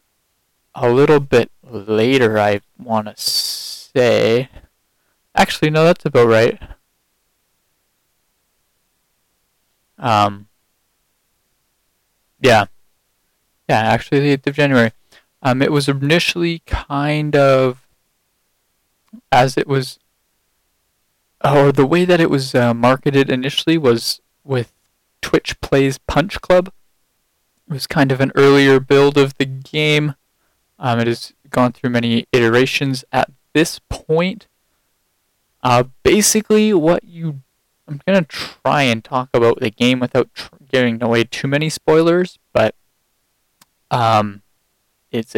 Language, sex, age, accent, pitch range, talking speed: English, male, 20-39, American, 120-150 Hz, 115 wpm